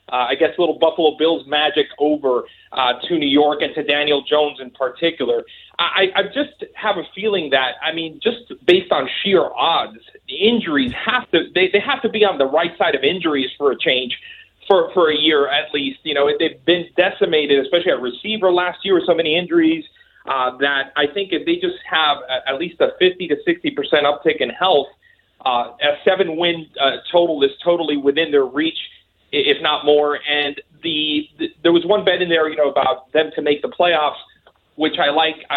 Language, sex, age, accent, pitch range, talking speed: English, male, 30-49, American, 135-205 Hz, 210 wpm